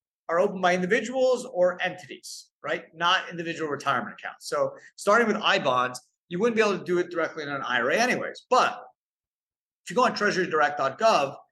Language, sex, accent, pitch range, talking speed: English, male, American, 150-205 Hz, 170 wpm